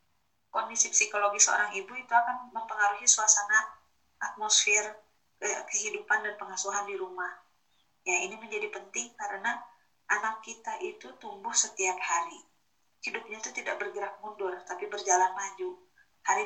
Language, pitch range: Indonesian, 195-230 Hz